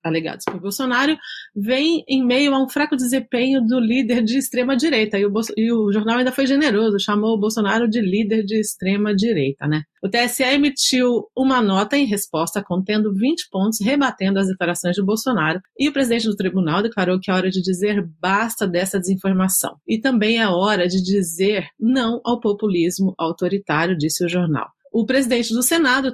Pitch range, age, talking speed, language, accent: 190-255 Hz, 30-49, 175 wpm, Portuguese, Brazilian